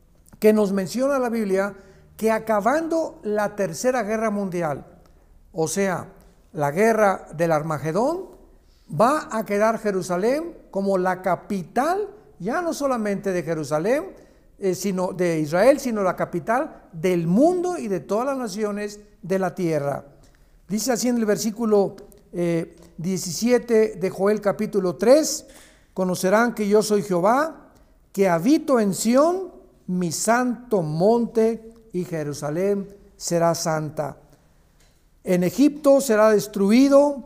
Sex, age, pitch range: male, 60-79, 180-230 Hz